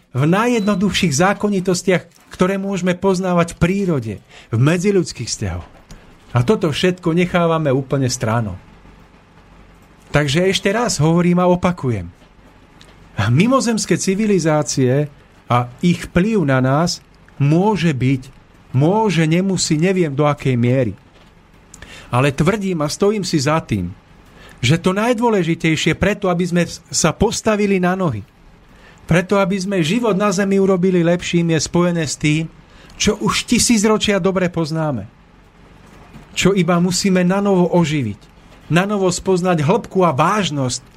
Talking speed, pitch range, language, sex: 120 wpm, 130-190 Hz, Slovak, male